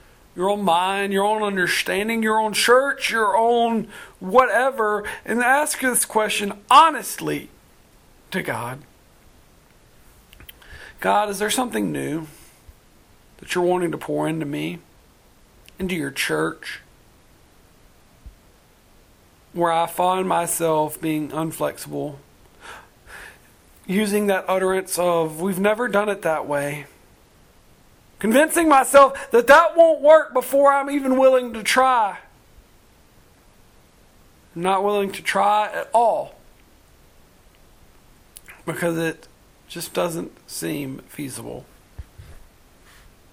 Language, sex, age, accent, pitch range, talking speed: English, male, 50-69, American, 165-230 Hz, 105 wpm